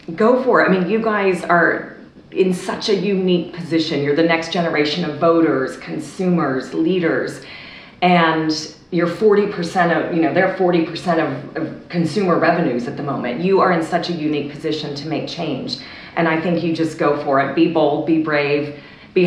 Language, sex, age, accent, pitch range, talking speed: English, female, 40-59, American, 155-180 Hz, 185 wpm